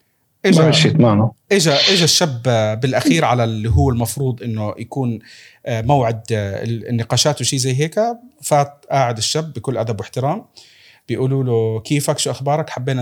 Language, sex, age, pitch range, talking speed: Arabic, male, 40-59, 120-150 Hz, 130 wpm